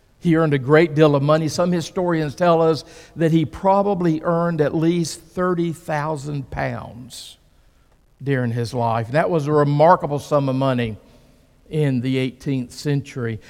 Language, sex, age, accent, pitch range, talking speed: English, male, 50-69, American, 125-165 Hz, 145 wpm